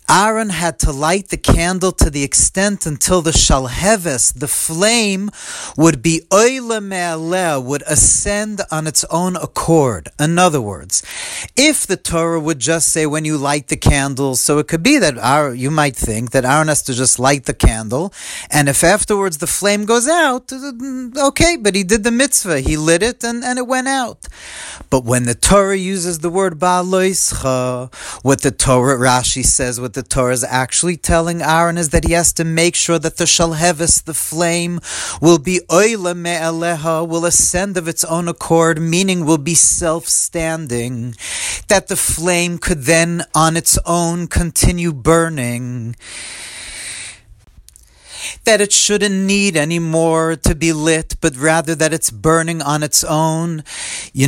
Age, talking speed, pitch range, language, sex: 40-59, 165 wpm, 145-180 Hz, English, male